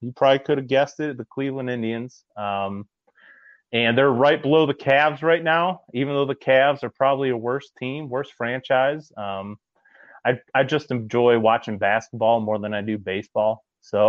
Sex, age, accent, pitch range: male, 30-49, American, 110-135 Hz